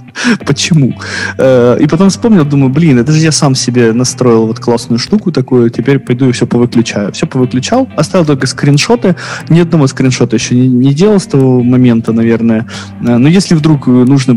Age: 20-39